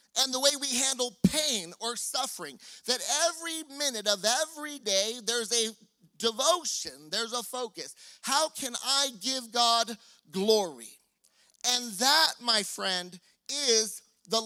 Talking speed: 135 wpm